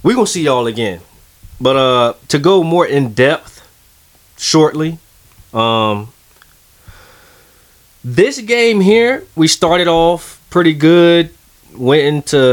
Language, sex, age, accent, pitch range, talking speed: English, male, 20-39, American, 100-150 Hz, 120 wpm